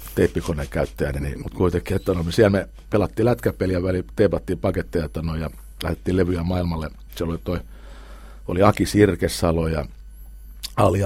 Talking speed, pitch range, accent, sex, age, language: 150 wpm, 70-90 Hz, native, male, 60-79, Finnish